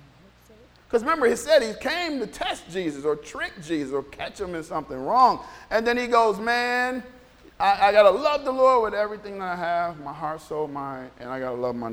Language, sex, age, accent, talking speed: English, male, 40-59, American, 220 wpm